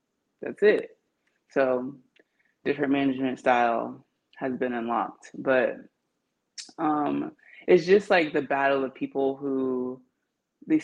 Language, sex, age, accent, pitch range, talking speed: English, female, 20-39, American, 130-160 Hz, 110 wpm